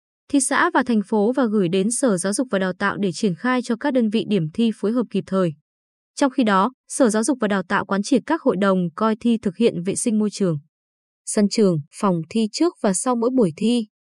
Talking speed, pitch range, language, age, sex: 250 wpm, 185-250 Hz, Vietnamese, 20-39, female